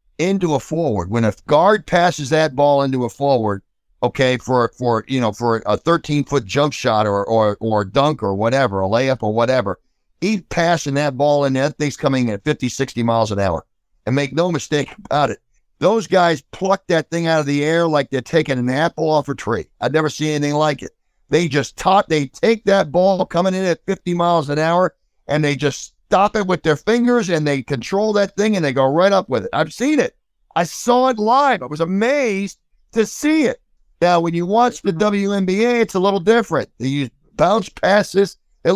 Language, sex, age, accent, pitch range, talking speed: English, male, 50-69, American, 140-195 Hz, 215 wpm